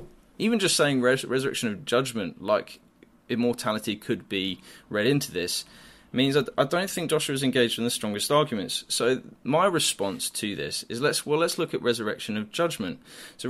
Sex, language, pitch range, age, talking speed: male, English, 105-150 Hz, 20-39, 185 wpm